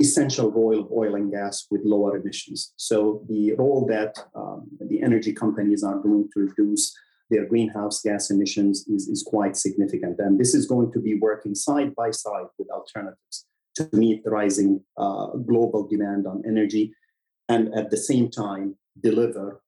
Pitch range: 105-135 Hz